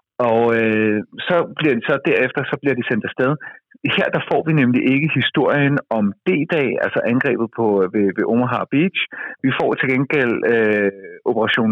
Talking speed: 175 wpm